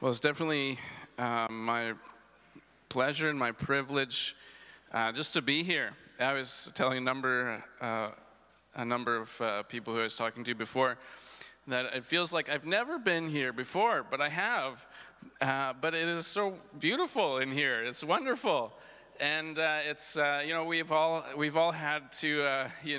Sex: male